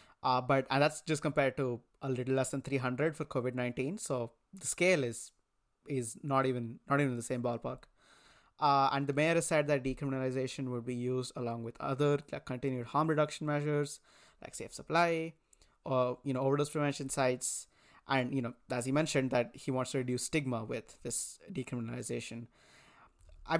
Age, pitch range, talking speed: 20-39, 125-150 Hz, 185 wpm